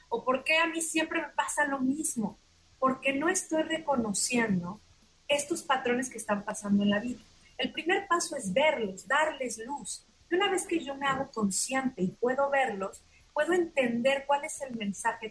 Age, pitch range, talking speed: 30-49, 205-270 Hz, 180 wpm